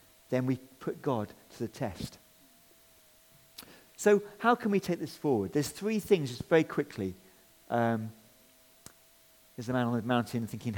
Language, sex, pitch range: English, male, 115-160 Hz